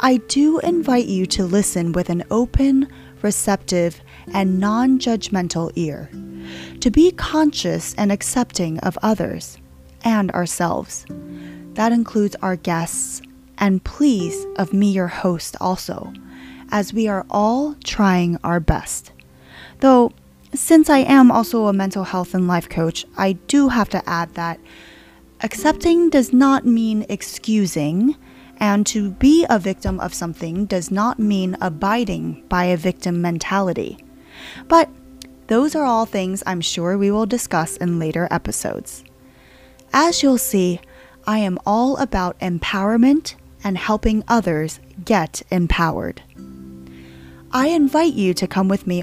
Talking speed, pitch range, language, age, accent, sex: 135 wpm, 170-235 Hz, English, 20-39, American, female